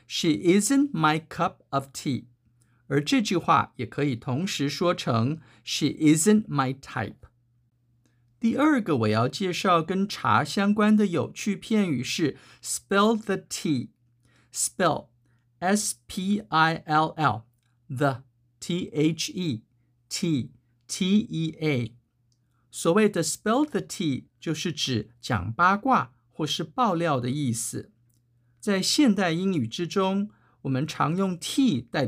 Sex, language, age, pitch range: male, Chinese, 50-69, 125-205 Hz